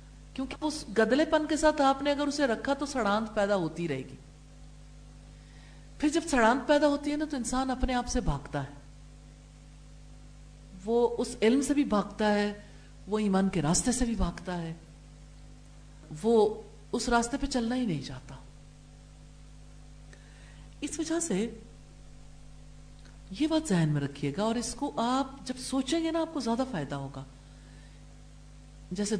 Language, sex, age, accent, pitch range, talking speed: English, female, 50-69, Indian, 175-255 Hz, 140 wpm